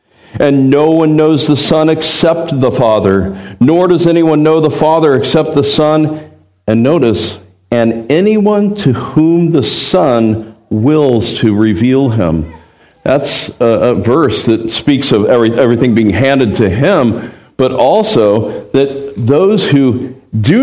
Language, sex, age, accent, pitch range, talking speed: English, male, 50-69, American, 115-170 Hz, 145 wpm